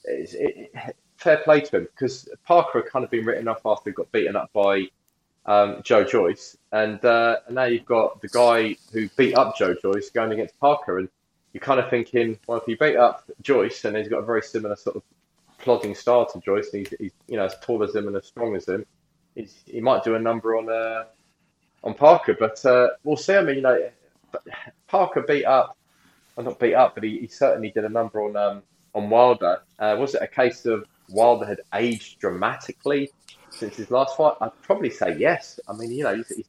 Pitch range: 110-150 Hz